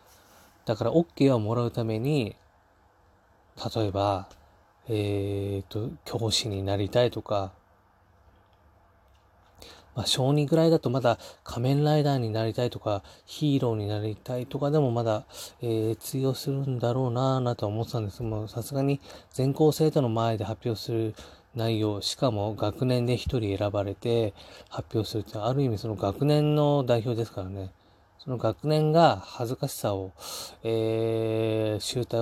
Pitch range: 100-125 Hz